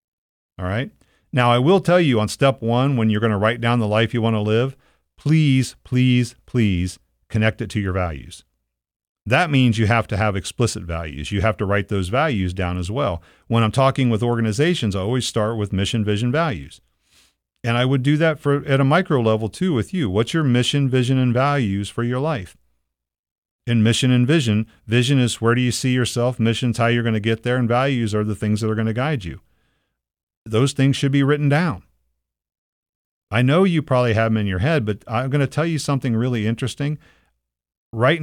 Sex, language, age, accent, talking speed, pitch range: male, English, 40-59, American, 215 wpm, 90-125 Hz